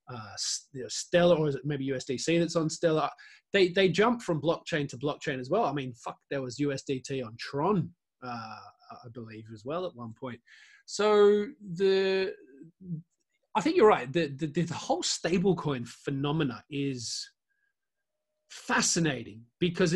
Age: 20-39